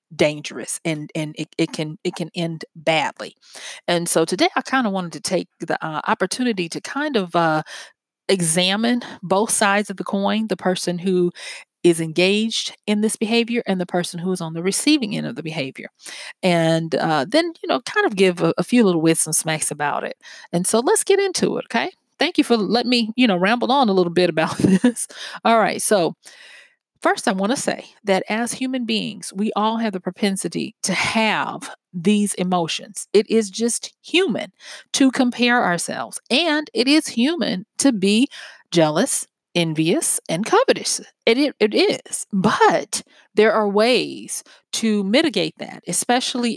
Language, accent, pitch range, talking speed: English, American, 175-235 Hz, 180 wpm